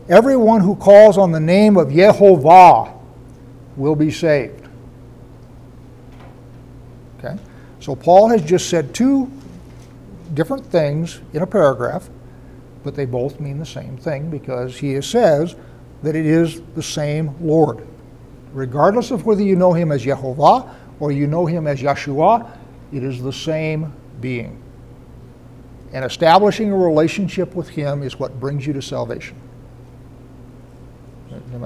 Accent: American